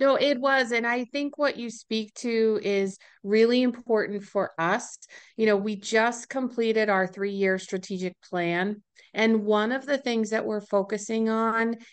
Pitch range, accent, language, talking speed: 195-240 Hz, American, English, 165 wpm